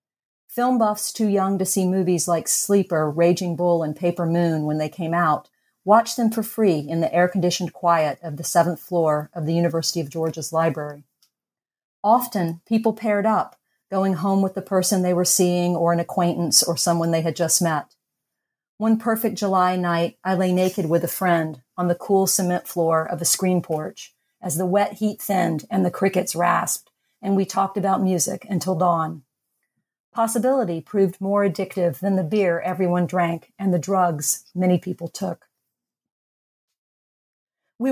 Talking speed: 170 wpm